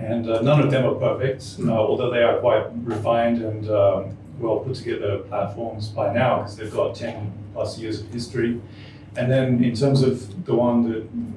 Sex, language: male, English